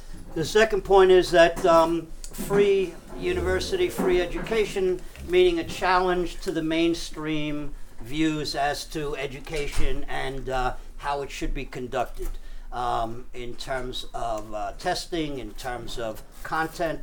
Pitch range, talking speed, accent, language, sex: 135-175 Hz, 130 wpm, American, English, male